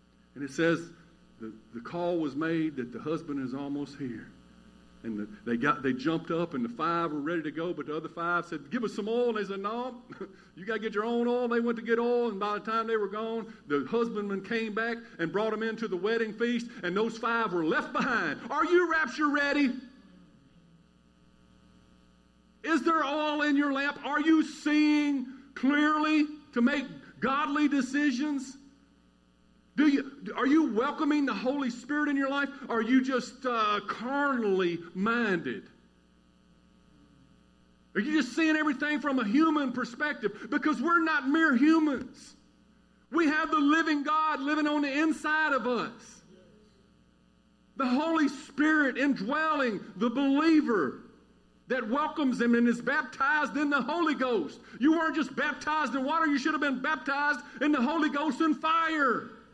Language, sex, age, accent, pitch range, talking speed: English, male, 50-69, American, 205-295 Hz, 170 wpm